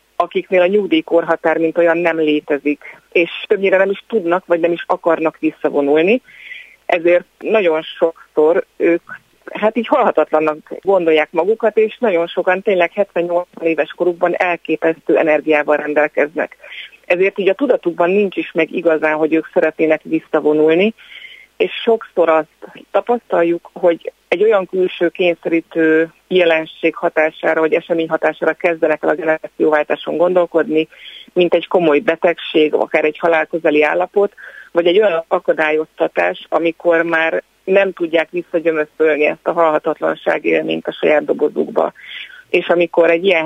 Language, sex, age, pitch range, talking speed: Hungarian, female, 30-49, 155-185 Hz, 130 wpm